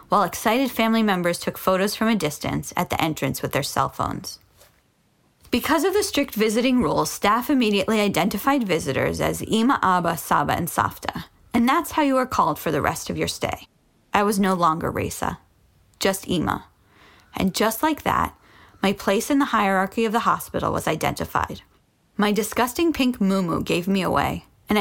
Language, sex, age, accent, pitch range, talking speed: English, female, 20-39, American, 185-240 Hz, 175 wpm